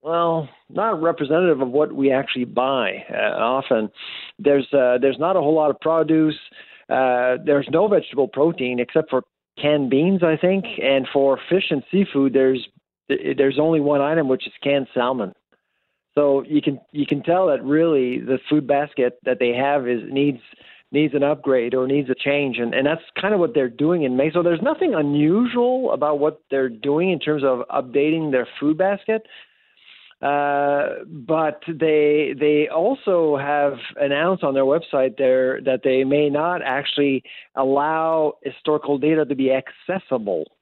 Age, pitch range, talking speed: 50-69, 130-155 Hz, 170 wpm